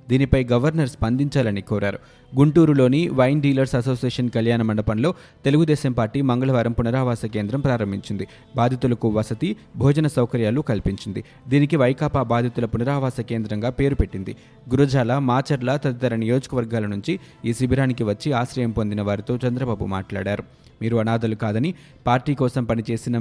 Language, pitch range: Telugu, 115-140 Hz